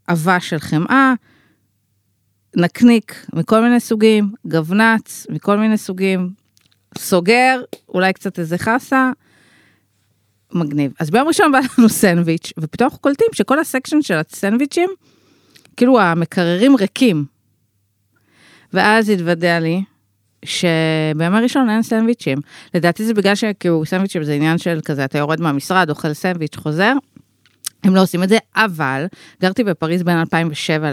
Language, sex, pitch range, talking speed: Hebrew, female, 155-225 Hz, 100 wpm